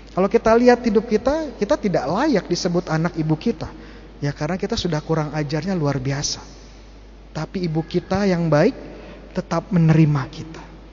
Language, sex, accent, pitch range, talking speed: Indonesian, male, native, 155-210 Hz, 155 wpm